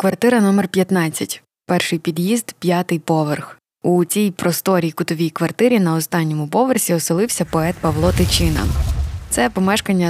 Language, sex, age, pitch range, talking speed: Ukrainian, female, 20-39, 165-205 Hz, 125 wpm